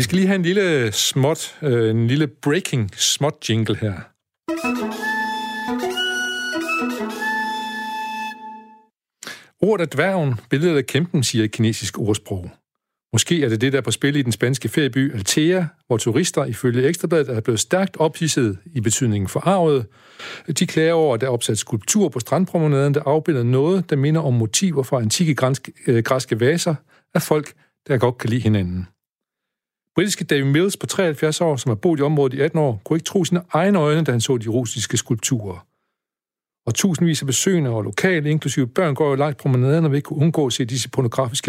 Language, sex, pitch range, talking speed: Danish, male, 120-165 Hz, 175 wpm